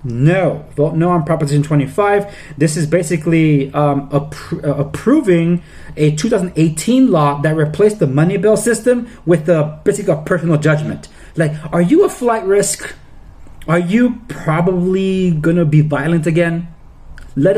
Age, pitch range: 30-49, 140-170 Hz